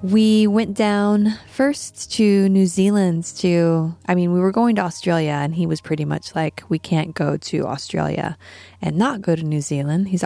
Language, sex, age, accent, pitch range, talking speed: English, female, 20-39, American, 140-170 Hz, 195 wpm